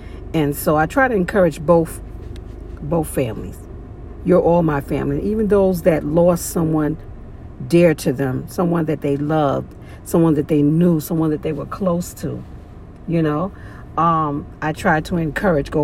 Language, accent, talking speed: English, American, 165 wpm